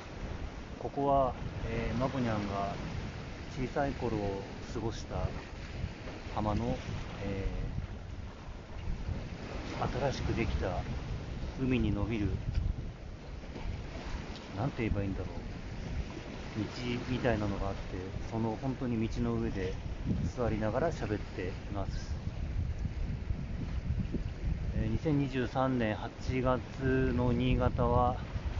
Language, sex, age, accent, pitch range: Japanese, male, 40-59, native, 95-120 Hz